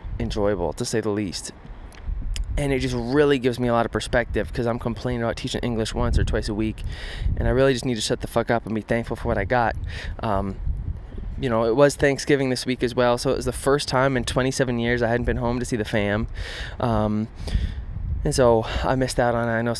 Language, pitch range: English, 105-130 Hz